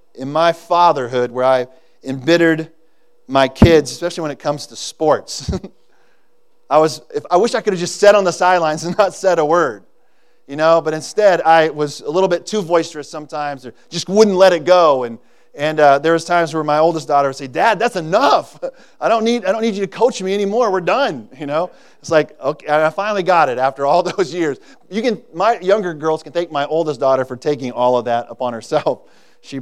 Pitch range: 150-200 Hz